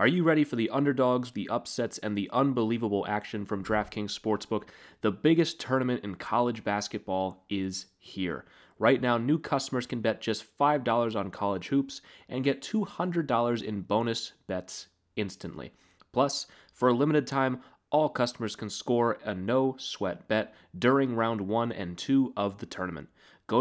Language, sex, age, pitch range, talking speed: English, male, 30-49, 100-130 Hz, 160 wpm